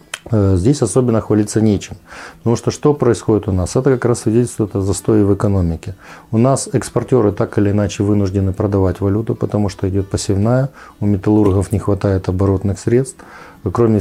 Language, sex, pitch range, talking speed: Ukrainian, male, 100-120 Hz, 165 wpm